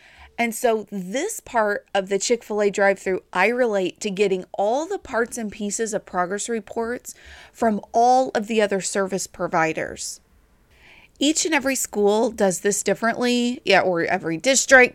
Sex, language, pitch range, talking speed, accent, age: female, English, 195-270 Hz, 160 wpm, American, 30-49